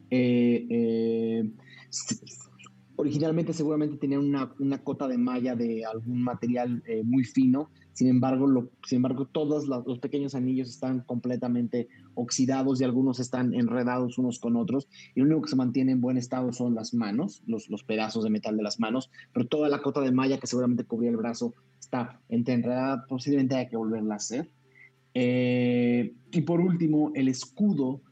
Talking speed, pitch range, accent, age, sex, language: 175 wpm, 120-140 Hz, Mexican, 30-49, male, Spanish